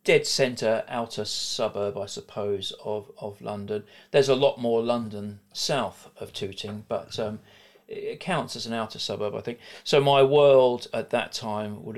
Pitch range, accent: 105-115 Hz, British